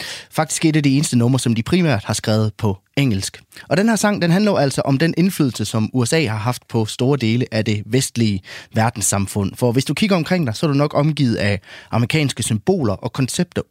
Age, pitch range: 30-49, 110-150 Hz